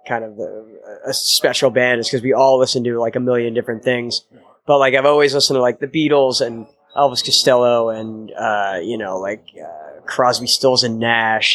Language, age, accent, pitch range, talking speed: English, 20-39, American, 115-135 Hz, 205 wpm